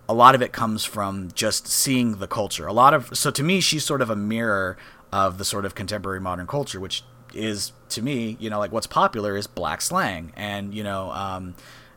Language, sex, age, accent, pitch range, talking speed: English, male, 30-49, American, 95-120 Hz, 220 wpm